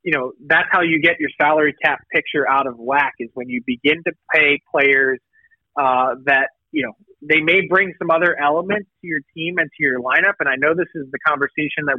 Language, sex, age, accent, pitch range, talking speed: English, male, 30-49, American, 140-180 Hz, 225 wpm